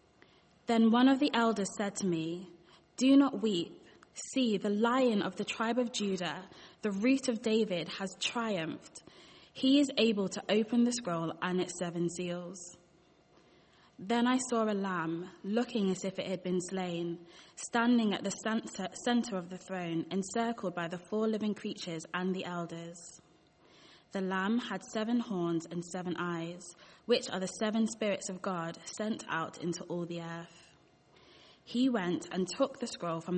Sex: female